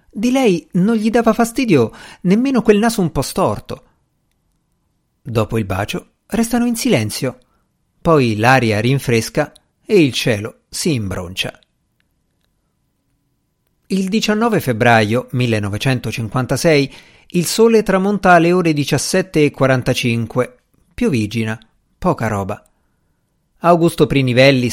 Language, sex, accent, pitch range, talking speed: Italian, male, native, 115-170 Hz, 100 wpm